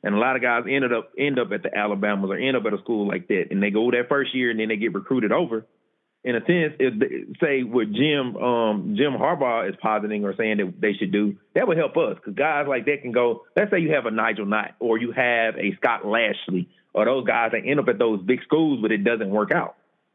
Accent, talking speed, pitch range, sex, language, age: American, 265 wpm, 110-135 Hz, male, English, 30-49